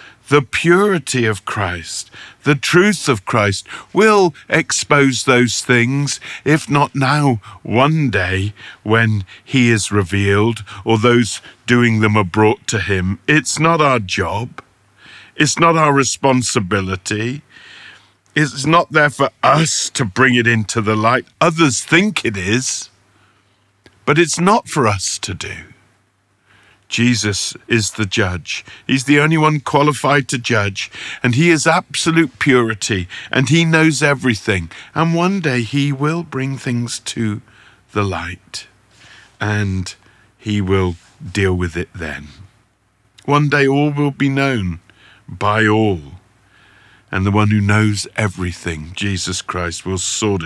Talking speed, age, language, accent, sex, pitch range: 135 wpm, 50-69, English, British, male, 100-145 Hz